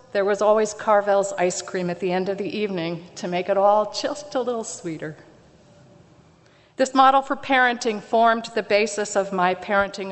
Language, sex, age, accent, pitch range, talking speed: English, female, 50-69, American, 160-220 Hz, 180 wpm